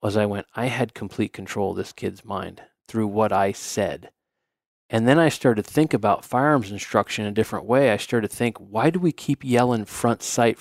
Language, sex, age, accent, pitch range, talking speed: English, male, 40-59, American, 105-130 Hz, 220 wpm